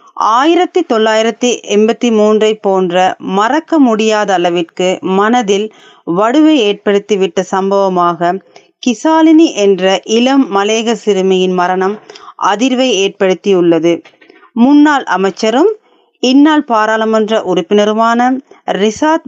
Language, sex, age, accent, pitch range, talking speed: Tamil, female, 30-49, native, 195-285 Hz, 80 wpm